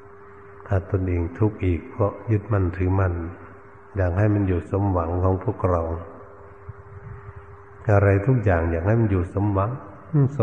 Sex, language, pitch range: male, Thai, 95-110 Hz